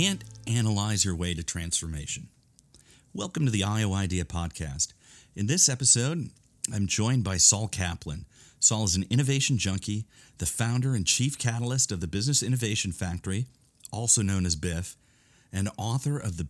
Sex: male